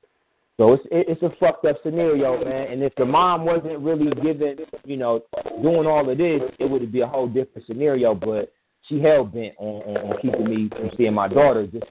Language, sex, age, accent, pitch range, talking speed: English, male, 30-49, American, 130-175 Hz, 195 wpm